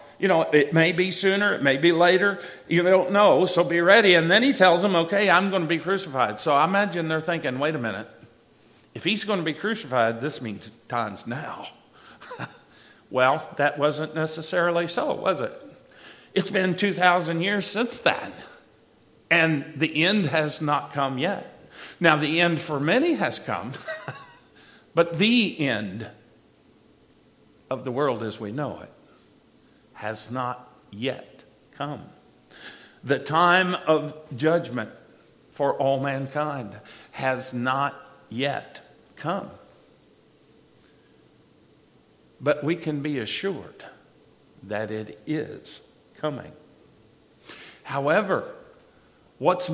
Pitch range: 140-185 Hz